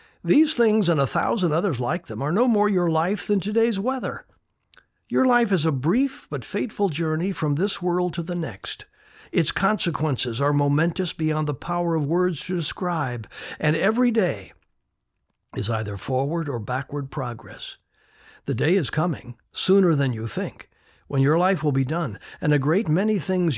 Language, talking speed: English, 175 wpm